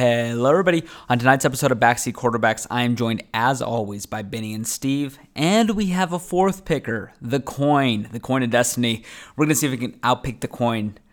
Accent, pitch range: American, 115-150 Hz